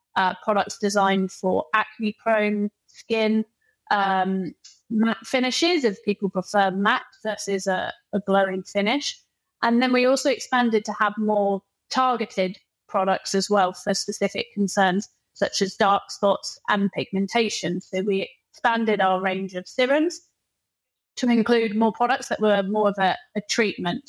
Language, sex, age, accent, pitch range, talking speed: English, female, 30-49, British, 200-235 Hz, 140 wpm